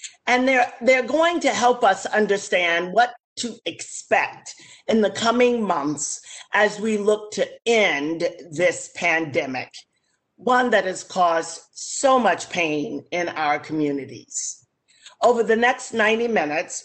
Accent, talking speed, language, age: American, 130 wpm, English, 50-69